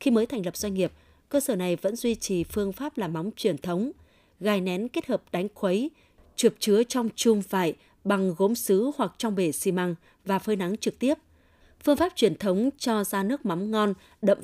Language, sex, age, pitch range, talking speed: Vietnamese, female, 20-39, 180-230 Hz, 215 wpm